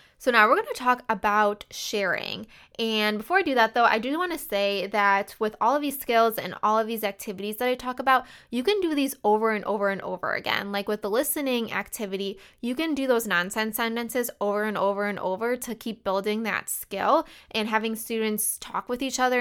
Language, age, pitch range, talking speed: English, 20-39, 205-255 Hz, 225 wpm